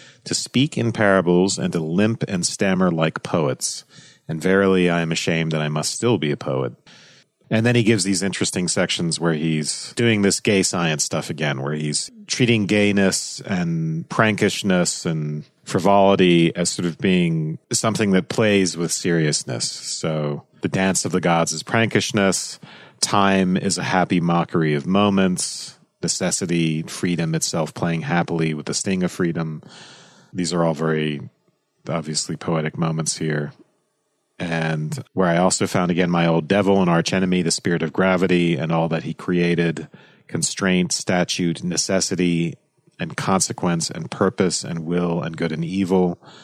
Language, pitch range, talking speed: English, 85-105 Hz, 160 wpm